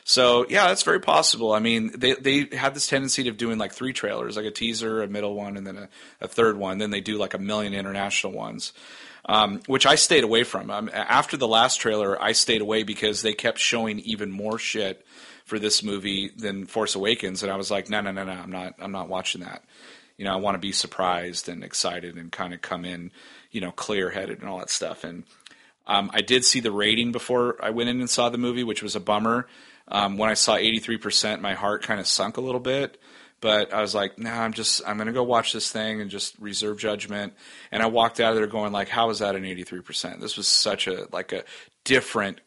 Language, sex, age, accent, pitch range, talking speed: English, male, 30-49, American, 100-115 Hz, 240 wpm